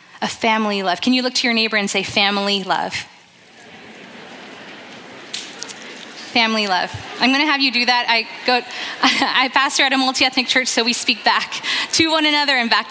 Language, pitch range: English, 220-265 Hz